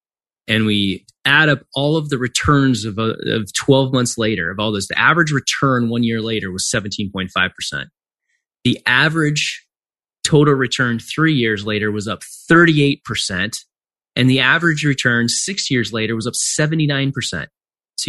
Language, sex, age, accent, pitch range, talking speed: English, male, 20-39, American, 105-140 Hz, 150 wpm